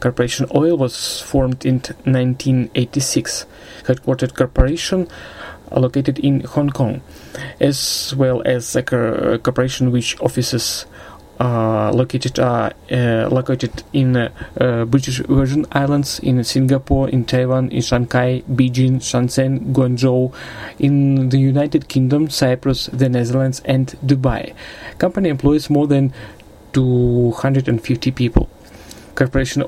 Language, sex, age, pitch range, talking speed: Russian, male, 30-49, 125-135 Hz, 105 wpm